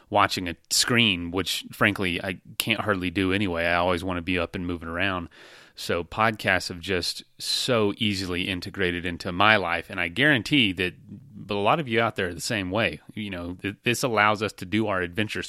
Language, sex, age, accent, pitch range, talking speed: English, male, 30-49, American, 90-110 Hz, 200 wpm